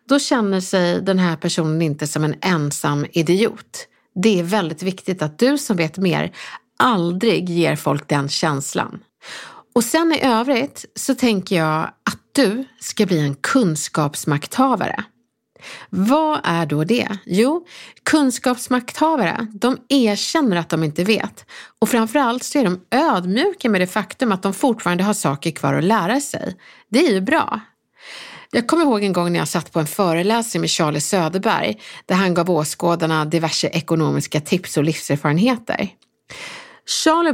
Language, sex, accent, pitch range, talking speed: Swedish, female, native, 165-240 Hz, 155 wpm